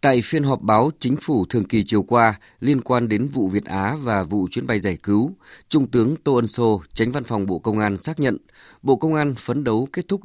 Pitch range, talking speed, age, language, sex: 100-130 Hz, 245 wpm, 20-39, English, male